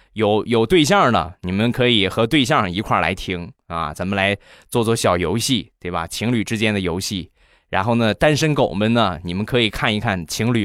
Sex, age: male, 20-39